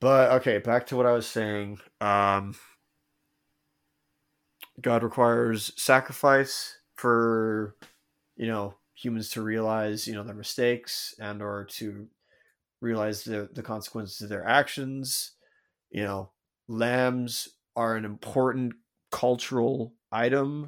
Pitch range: 105-120 Hz